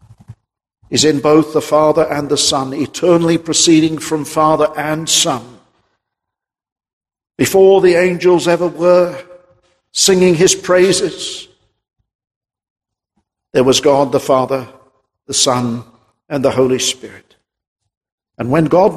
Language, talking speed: English, 115 wpm